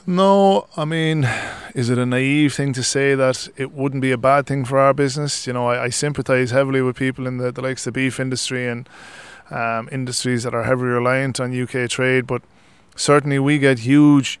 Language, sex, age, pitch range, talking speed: English, male, 20-39, 120-135 Hz, 210 wpm